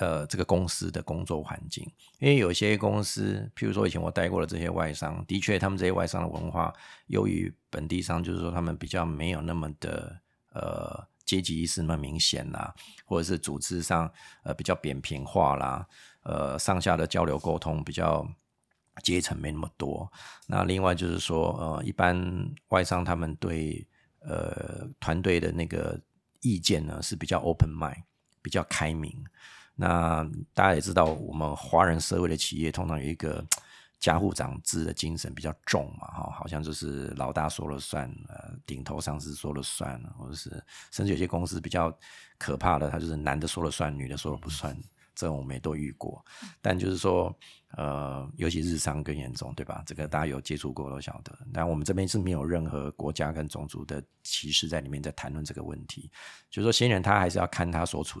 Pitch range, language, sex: 75-90 Hz, Chinese, male